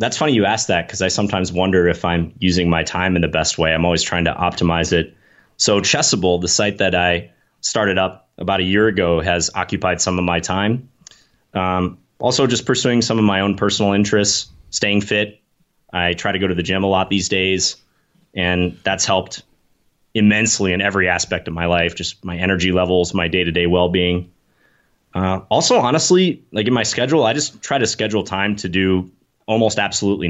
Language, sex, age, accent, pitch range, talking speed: English, male, 30-49, American, 85-100 Hz, 195 wpm